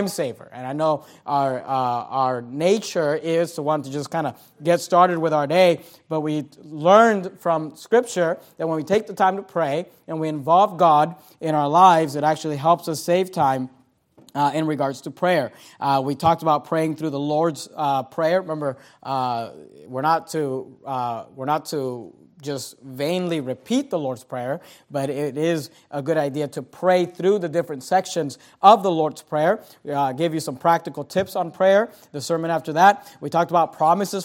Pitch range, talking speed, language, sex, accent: 145-175 Hz, 190 wpm, English, male, American